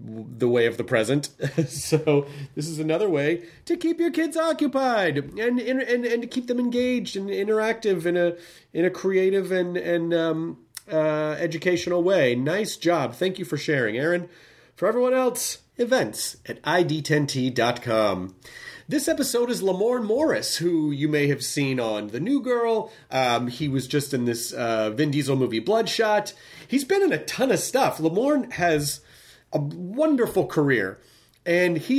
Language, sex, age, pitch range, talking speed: English, male, 30-49, 145-205 Hz, 165 wpm